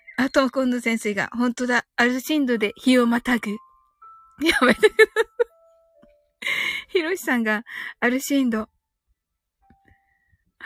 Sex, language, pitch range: female, Japanese, 255-370 Hz